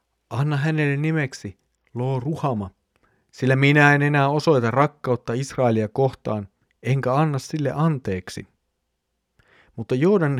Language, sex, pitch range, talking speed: Finnish, male, 110-135 Hz, 110 wpm